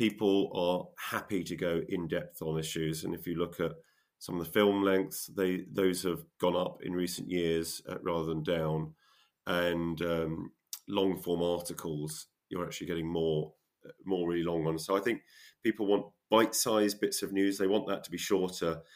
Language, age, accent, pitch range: English, 30-49, British, 80-95 Hz